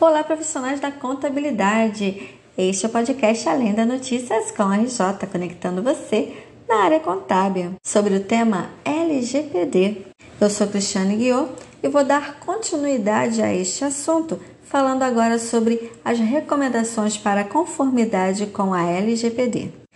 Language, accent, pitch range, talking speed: Portuguese, Brazilian, 195-260 Hz, 130 wpm